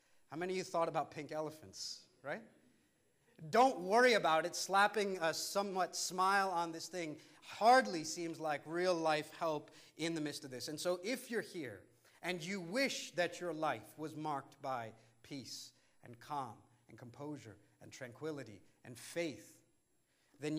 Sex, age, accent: male, 40-59, American